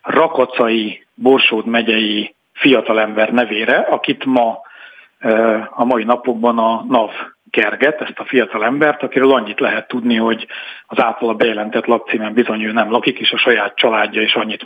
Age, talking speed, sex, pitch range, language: 40-59, 140 wpm, male, 115-130 Hz, Hungarian